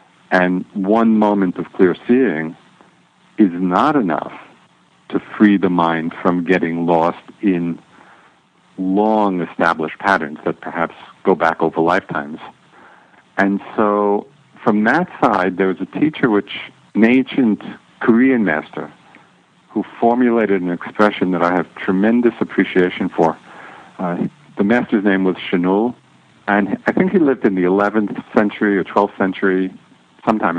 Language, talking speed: English, 135 wpm